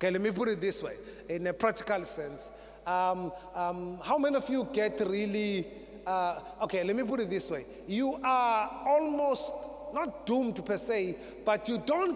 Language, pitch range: English, 190-235 Hz